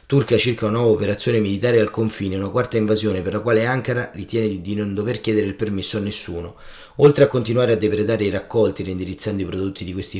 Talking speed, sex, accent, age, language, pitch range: 210 wpm, male, native, 30-49, Italian, 95-115 Hz